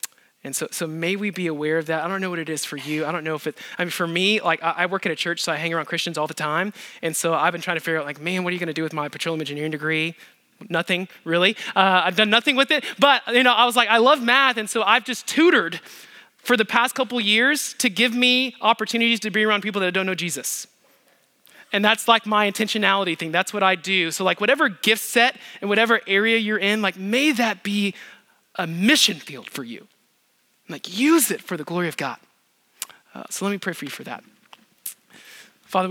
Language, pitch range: English, 165-225 Hz